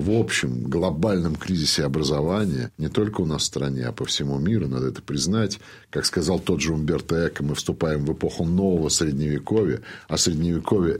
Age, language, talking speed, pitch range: 50-69, Russian, 175 wpm, 80-105 Hz